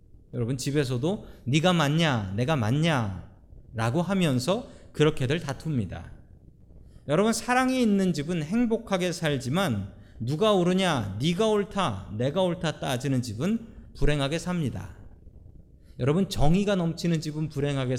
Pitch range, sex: 115-180 Hz, male